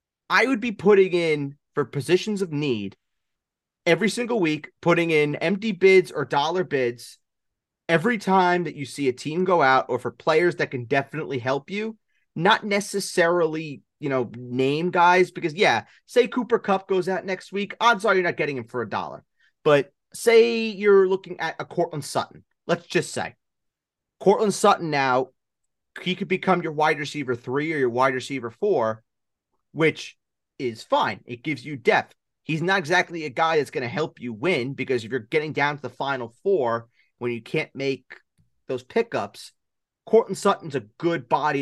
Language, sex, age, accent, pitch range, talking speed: English, male, 30-49, American, 125-180 Hz, 180 wpm